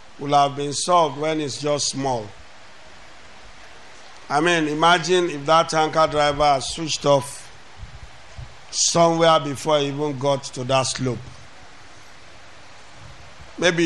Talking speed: 115 wpm